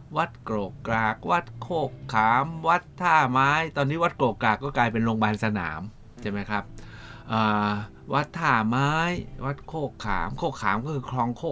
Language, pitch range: Thai, 105-140 Hz